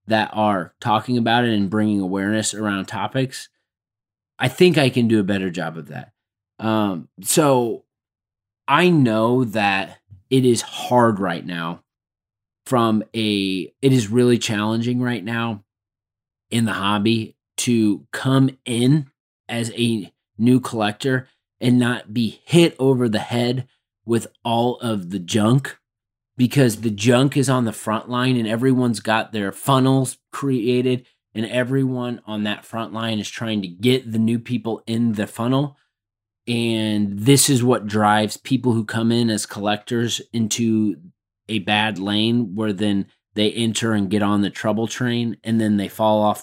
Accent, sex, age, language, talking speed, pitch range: American, male, 30-49, English, 155 wpm, 105-125 Hz